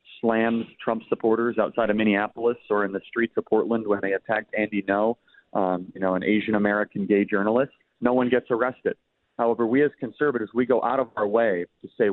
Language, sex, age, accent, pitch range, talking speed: English, male, 30-49, American, 100-120 Hz, 200 wpm